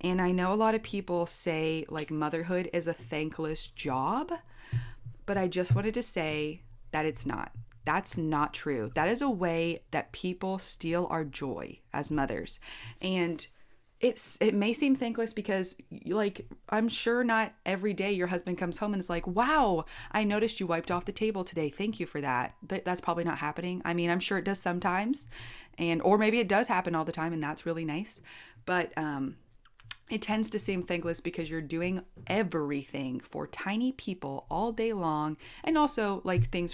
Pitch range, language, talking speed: 155-200 Hz, English, 190 wpm